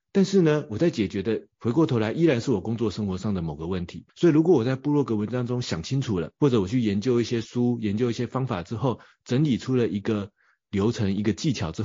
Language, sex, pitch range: Chinese, male, 95-125 Hz